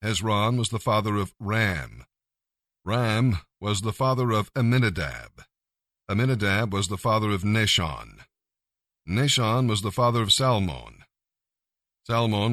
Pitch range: 105-120 Hz